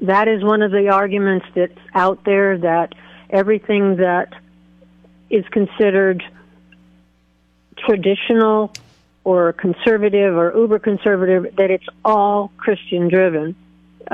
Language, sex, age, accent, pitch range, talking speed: English, female, 50-69, American, 175-210 Hz, 100 wpm